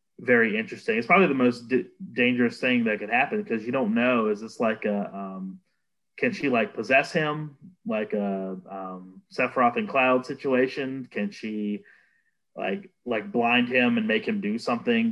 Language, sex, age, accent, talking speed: English, male, 30-49, American, 170 wpm